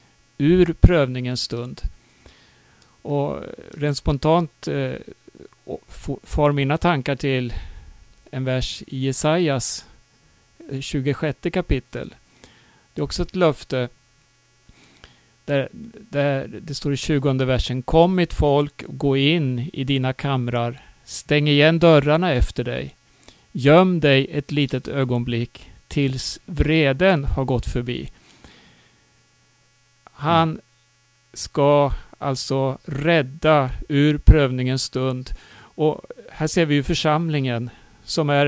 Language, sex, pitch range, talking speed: Swedish, male, 130-155 Hz, 105 wpm